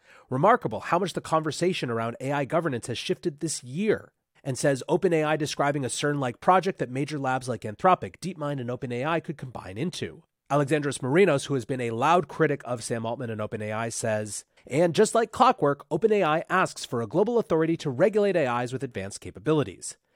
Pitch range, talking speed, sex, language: 120-170 Hz, 180 wpm, male, English